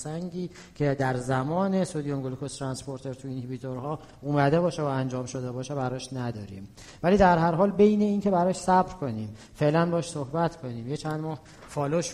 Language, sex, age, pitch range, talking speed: Persian, male, 40-59, 130-165 Hz, 165 wpm